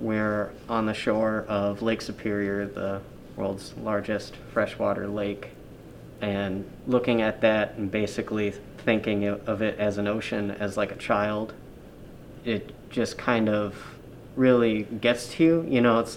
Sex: male